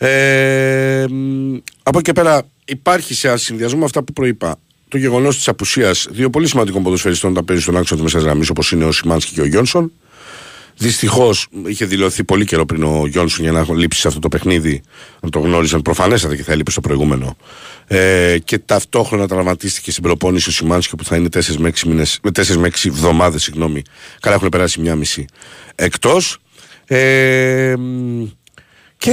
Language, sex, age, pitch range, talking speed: Greek, male, 50-69, 85-130 Hz, 160 wpm